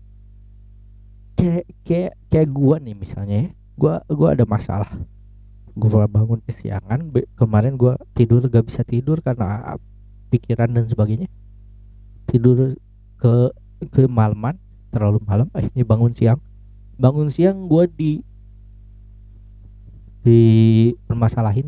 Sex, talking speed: male, 110 wpm